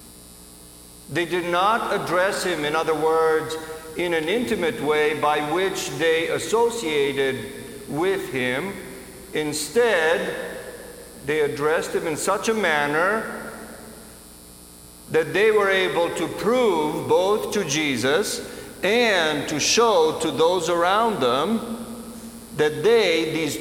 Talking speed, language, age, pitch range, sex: 115 wpm, English, 50-69, 115-190 Hz, male